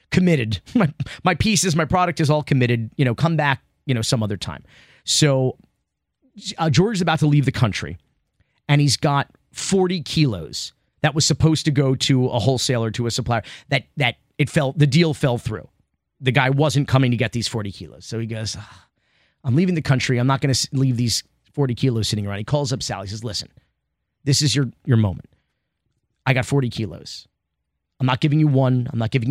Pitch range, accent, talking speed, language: 110-150 Hz, American, 210 wpm, English